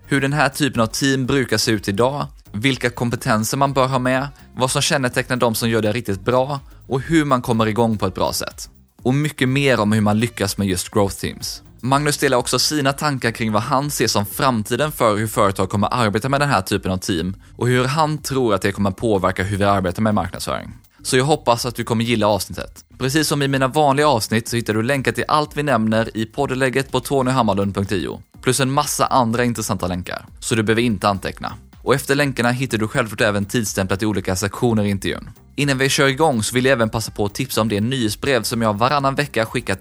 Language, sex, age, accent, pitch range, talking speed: Swedish, male, 20-39, native, 105-135 Hz, 230 wpm